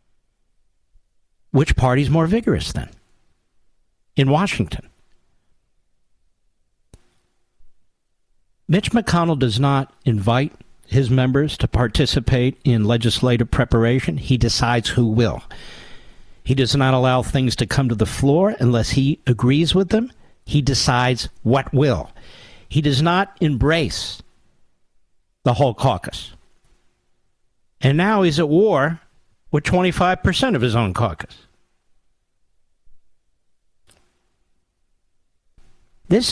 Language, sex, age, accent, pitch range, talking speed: English, male, 50-69, American, 90-145 Hz, 100 wpm